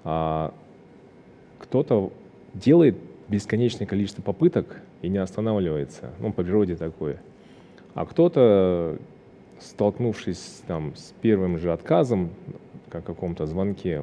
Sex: male